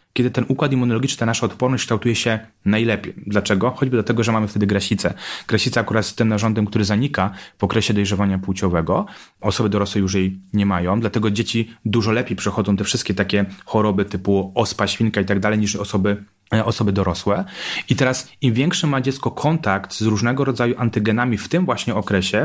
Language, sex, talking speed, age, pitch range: Polish, male, 180 wpm, 30-49, 100-120 Hz